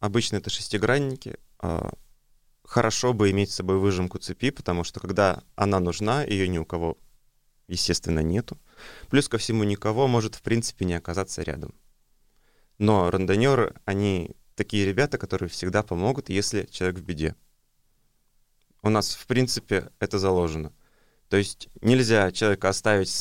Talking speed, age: 140 wpm, 20-39